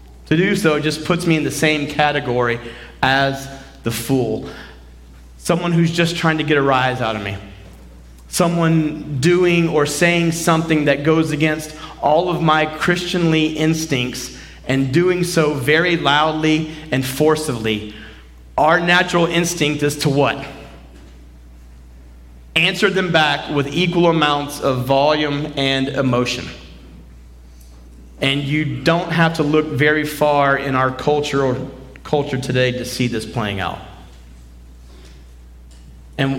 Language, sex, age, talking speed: English, male, 30-49, 130 wpm